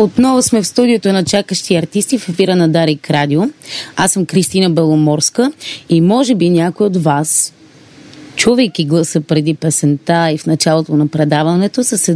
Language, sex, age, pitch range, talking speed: Bulgarian, female, 30-49, 155-200 Hz, 165 wpm